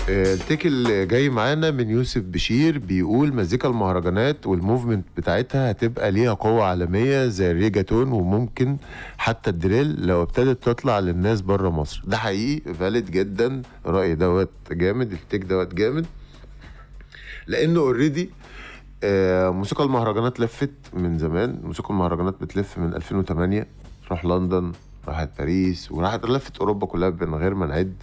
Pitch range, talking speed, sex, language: 85-110 Hz, 130 wpm, male, Arabic